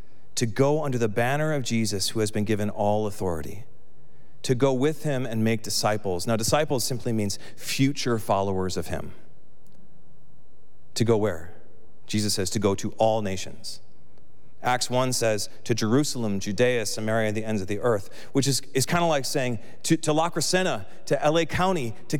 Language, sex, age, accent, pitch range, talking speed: English, male, 40-59, American, 110-155 Hz, 175 wpm